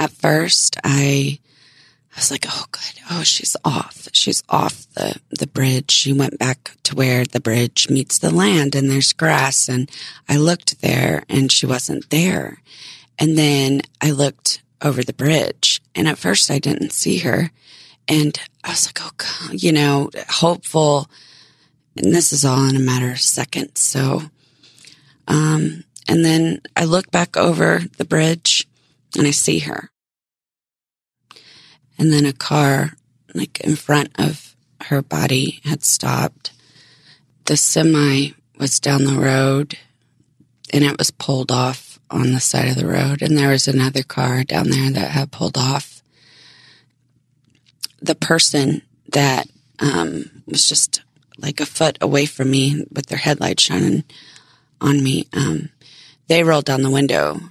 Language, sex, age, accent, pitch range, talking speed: English, female, 30-49, American, 135-150 Hz, 155 wpm